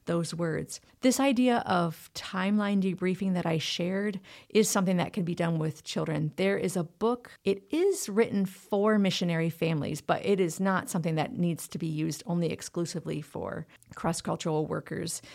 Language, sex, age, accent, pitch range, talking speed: English, female, 40-59, American, 170-210 Hz, 170 wpm